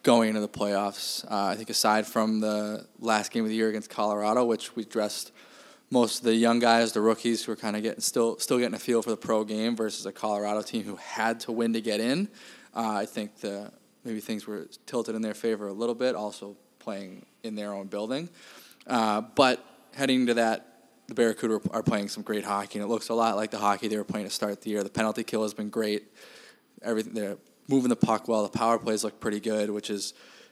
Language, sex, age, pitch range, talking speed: English, male, 20-39, 105-115 Hz, 235 wpm